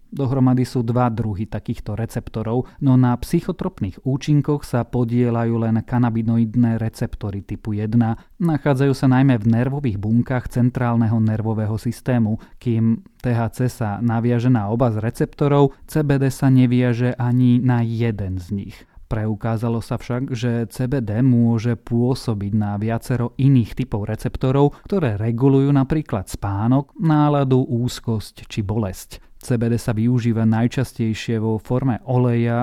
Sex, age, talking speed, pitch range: male, 30-49, 125 wpm, 115-130 Hz